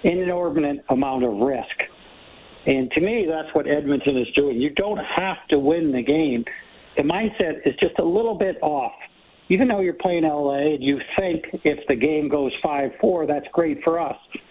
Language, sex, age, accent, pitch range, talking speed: English, male, 60-79, American, 135-170 Hz, 190 wpm